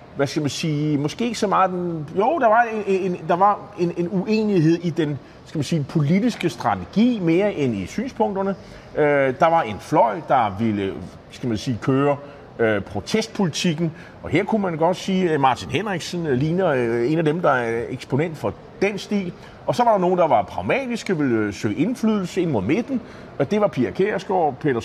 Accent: native